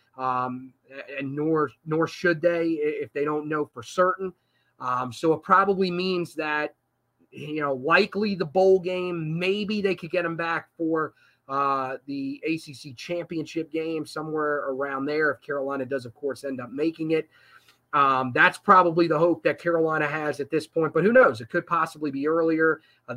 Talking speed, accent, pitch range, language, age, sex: 175 wpm, American, 135-165 Hz, English, 30-49, male